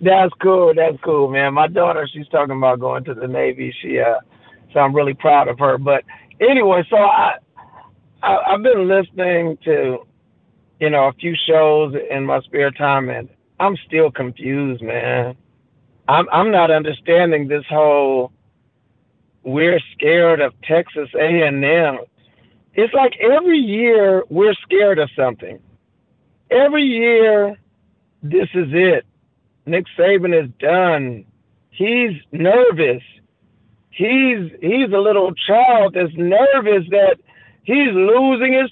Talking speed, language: 135 wpm, English